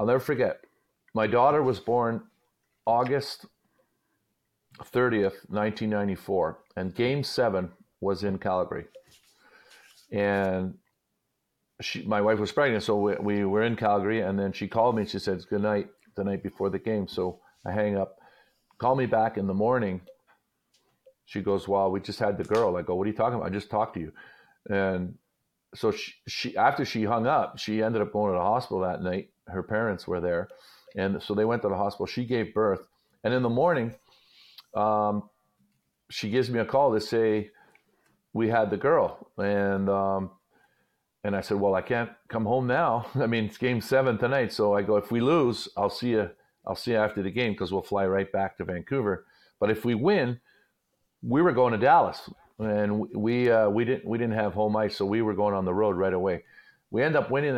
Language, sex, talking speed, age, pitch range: English, male, 200 wpm, 50-69, 100-120 Hz